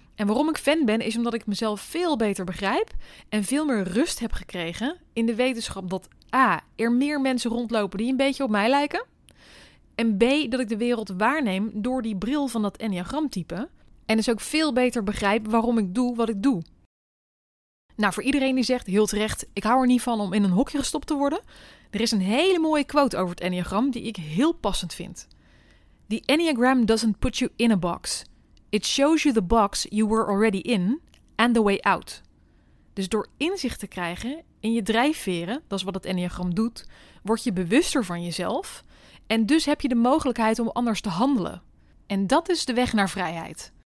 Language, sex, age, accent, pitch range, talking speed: Dutch, female, 20-39, Dutch, 200-260 Hz, 200 wpm